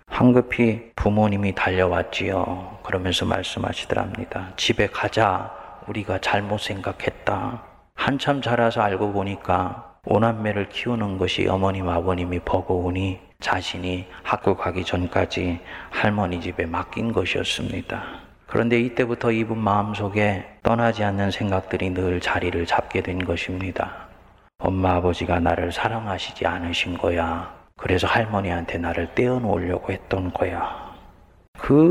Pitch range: 90-110 Hz